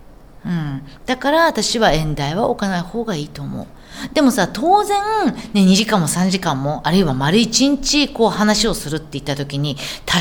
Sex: female